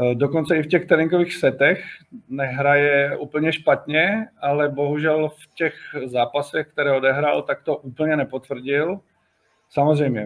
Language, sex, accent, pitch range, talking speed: Czech, male, native, 125-145 Hz, 125 wpm